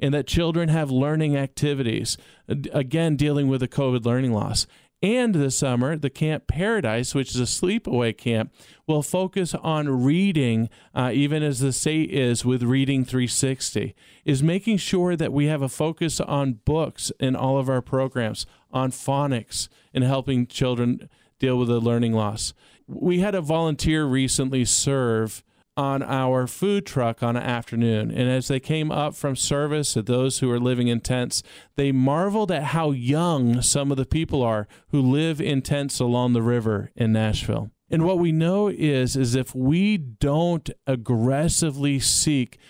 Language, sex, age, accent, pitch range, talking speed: English, male, 40-59, American, 120-150 Hz, 165 wpm